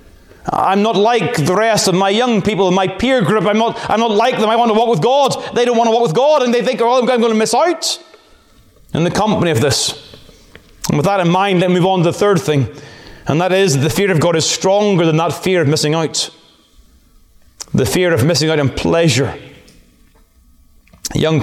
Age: 30-49